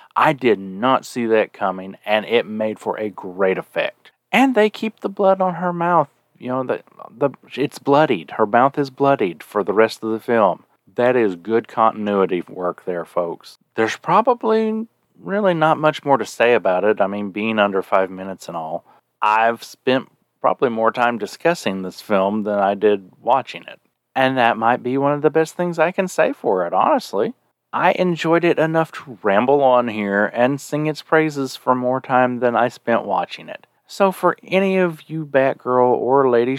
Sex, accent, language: male, American, English